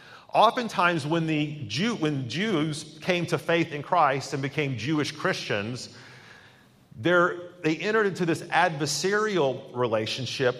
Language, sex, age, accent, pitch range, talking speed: English, male, 40-59, American, 135-175 Hz, 120 wpm